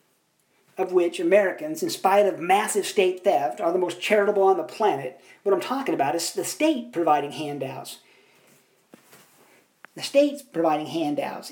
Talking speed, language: 150 wpm, English